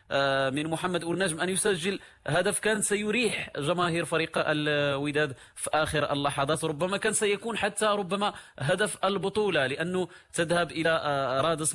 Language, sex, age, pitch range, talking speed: Arabic, male, 30-49, 140-170 Hz, 130 wpm